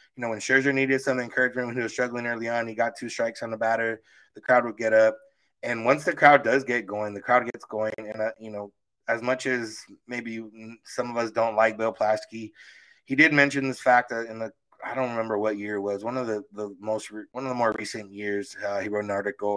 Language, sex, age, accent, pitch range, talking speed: English, male, 20-39, American, 105-125 Hz, 250 wpm